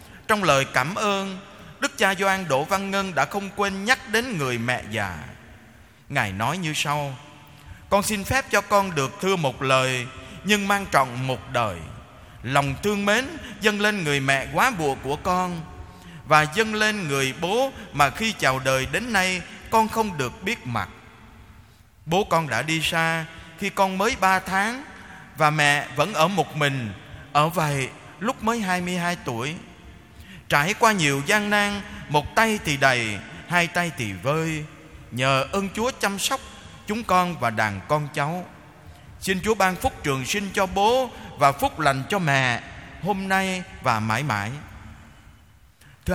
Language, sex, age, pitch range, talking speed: Vietnamese, male, 20-39, 135-205 Hz, 165 wpm